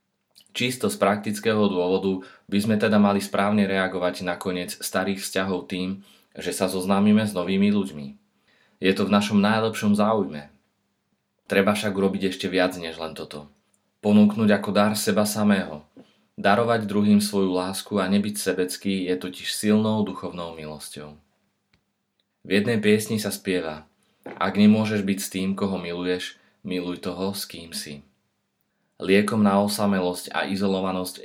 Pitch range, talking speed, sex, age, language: 90-100 Hz, 140 wpm, male, 30-49, Slovak